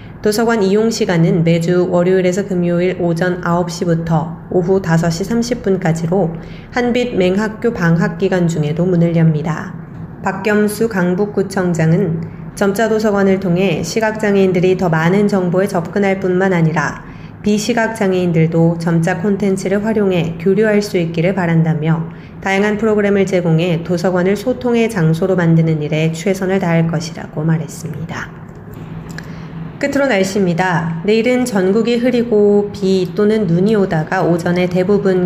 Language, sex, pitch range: Korean, female, 170-205 Hz